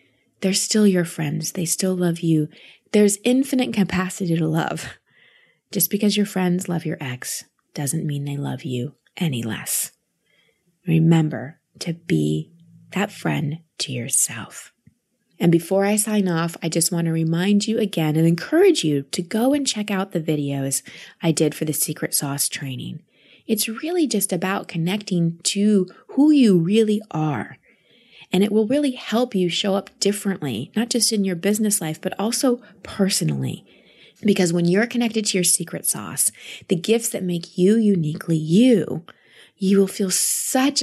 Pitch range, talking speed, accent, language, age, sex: 160-205 Hz, 160 wpm, American, English, 20-39, female